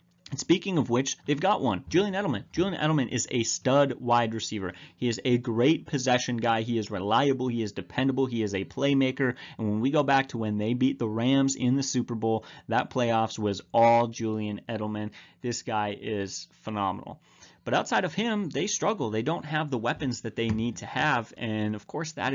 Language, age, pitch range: English, 30-49, 115-150 Hz